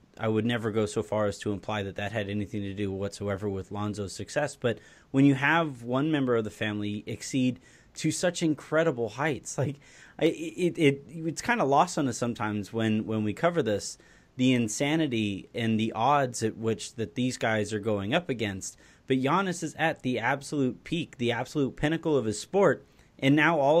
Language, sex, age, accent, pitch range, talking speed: English, male, 30-49, American, 115-150 Hz, 200 wpm